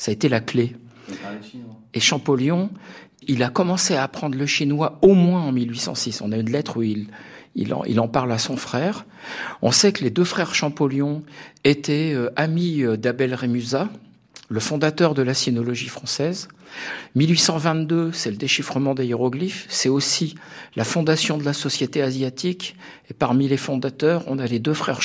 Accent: French